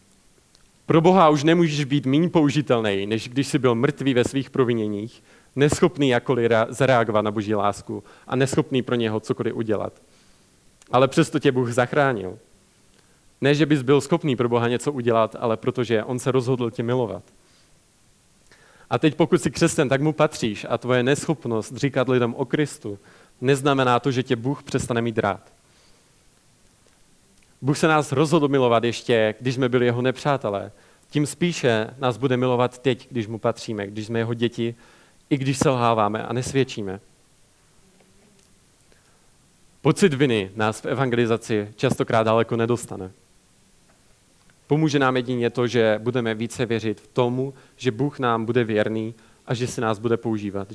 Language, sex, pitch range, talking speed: Czech, male, 110-140 Hz, 155 wpm